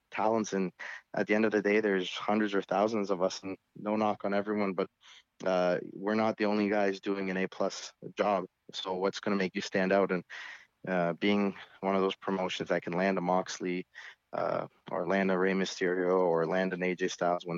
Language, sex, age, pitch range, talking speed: English, male, 20-39, 95-105 Hz, 210 wpm